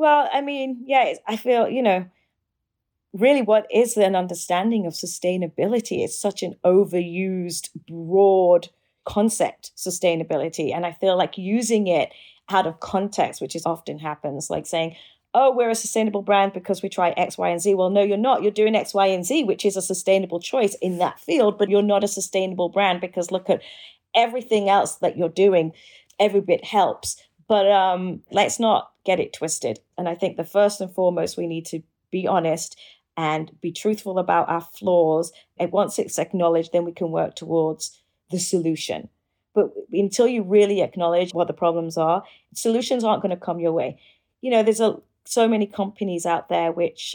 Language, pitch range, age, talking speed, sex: English, 170-215 Hz, 30-49, 185 wpm, female